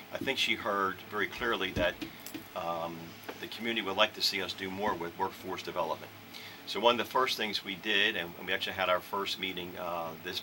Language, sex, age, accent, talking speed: English, male, 40-59, American, 215 wpm